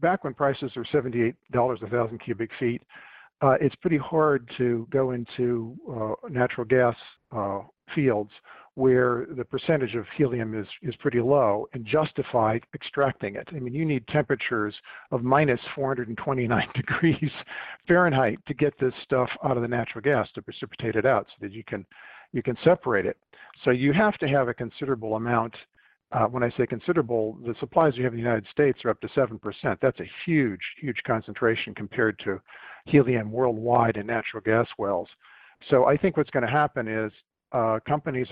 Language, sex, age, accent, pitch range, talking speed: English, male, 50-69, American, 115-140 Hz, 180 wpm